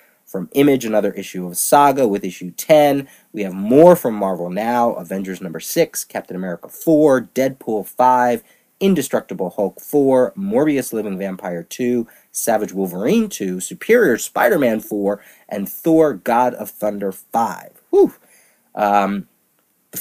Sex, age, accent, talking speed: male, 30-49, American, 130 wpm